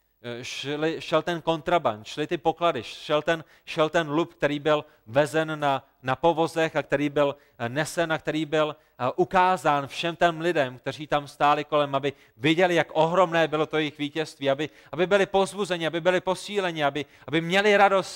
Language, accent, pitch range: Czech, native, 120-155 Hz